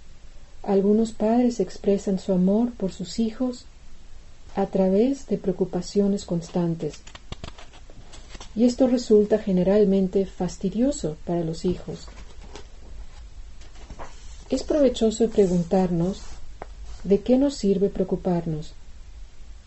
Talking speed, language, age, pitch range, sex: 90 wpm, English, 40-59, 155-215 Hz, female